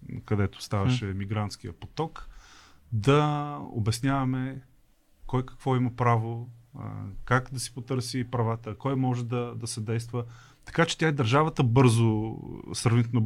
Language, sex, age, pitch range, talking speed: Bulgarian, male, 30-49, 110-135 Hz, 125 wpm